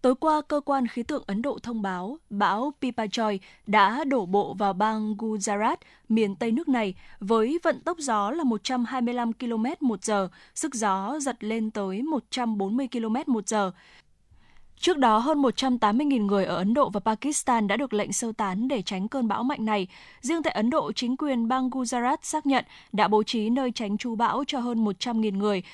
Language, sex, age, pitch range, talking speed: Vietnamese, female, 10-29, 205-260 Hz, 195 wpm